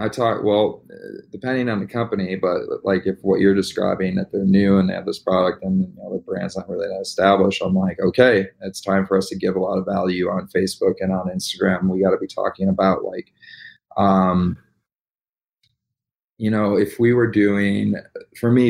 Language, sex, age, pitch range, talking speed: English, male, 30-49, 95-105 Hz, 205 wpm